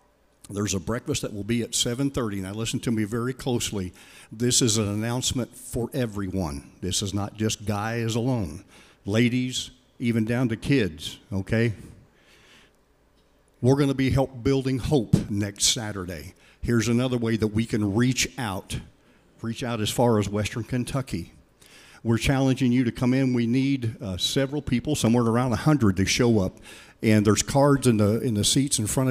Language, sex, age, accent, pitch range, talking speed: English, male, 50-69, American, 110-130 Hz, 175 wpm